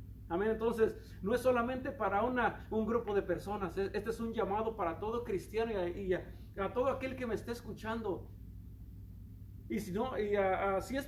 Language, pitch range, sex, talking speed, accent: Spanish, 190-245 Hz, male, 200 wpm, Mexican